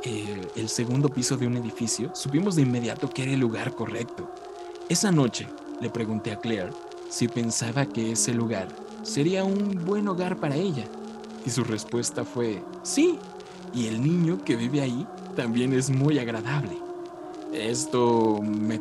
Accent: Mexican